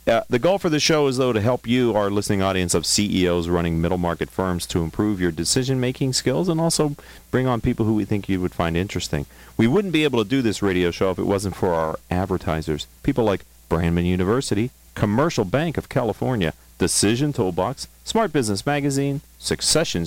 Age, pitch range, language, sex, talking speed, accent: 40-59, 85-125 Hz, English, male, 200 wpm, American